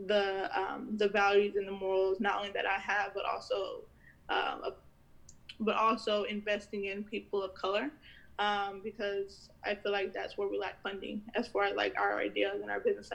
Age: 10-29